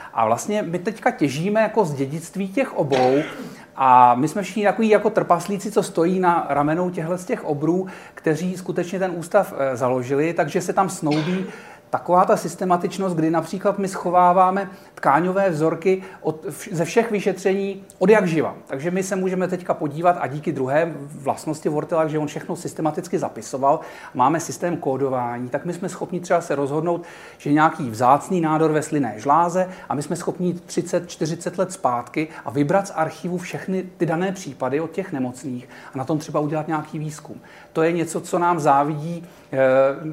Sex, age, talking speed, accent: male, 40-59, 170 wpm, native